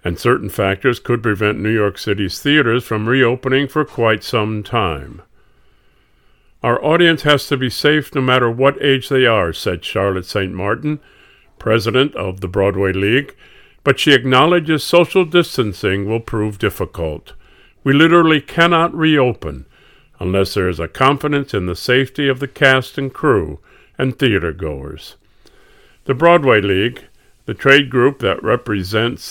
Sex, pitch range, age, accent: male, 105-140 Hz, 50-69, American